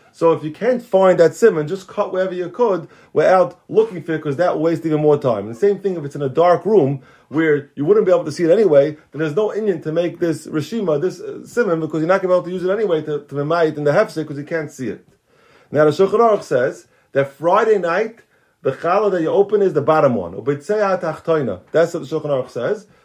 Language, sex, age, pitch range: English, male, 30-49, 150-195 Hz